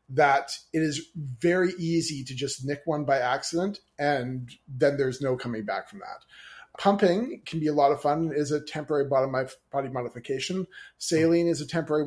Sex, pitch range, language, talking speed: male, 135-160 Hz, English, 175 wpm